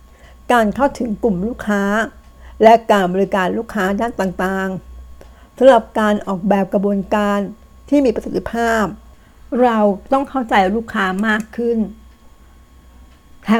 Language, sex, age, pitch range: Thai, female, 60-79, 190-230 Hz